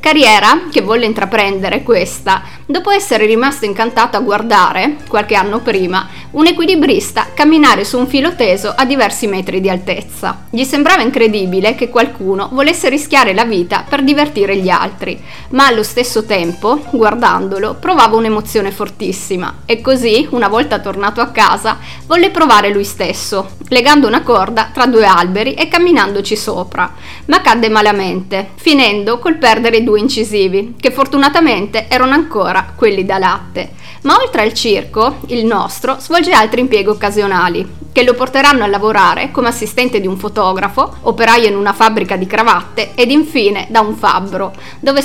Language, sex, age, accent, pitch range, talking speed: Italian, female, 30-49, native, 205-270 Hz, 150 wpm